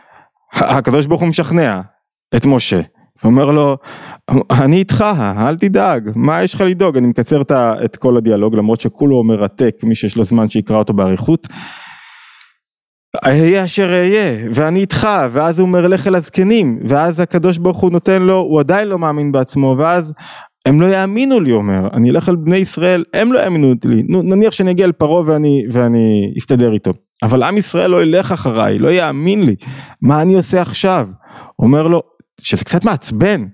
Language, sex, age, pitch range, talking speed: Hebrew, male, 20-39, 120-175 Hz, 165 wpm